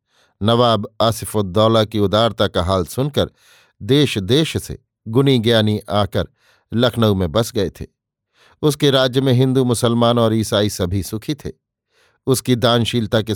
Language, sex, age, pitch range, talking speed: Hindi, male, 50-69, 105-130 Hz, 140 wpm